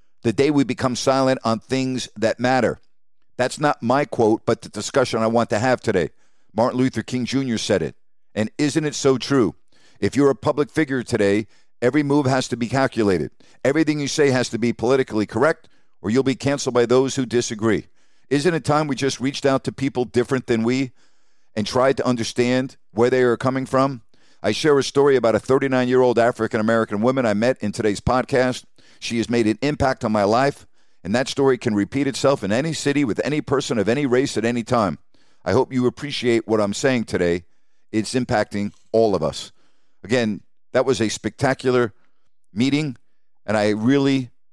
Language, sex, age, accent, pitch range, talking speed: English, male, 50-69, American, 115-140 Hz, 195 wpm